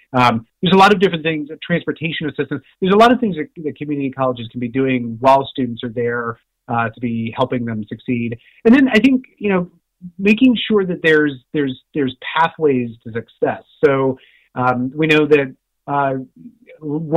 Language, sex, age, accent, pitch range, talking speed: English, male, 30-49, American, 125-145 Hz, 180 wpm